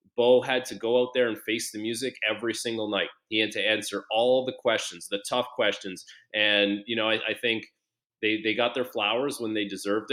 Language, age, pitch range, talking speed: English, 30-49, 105-125 Hz, 220 wpm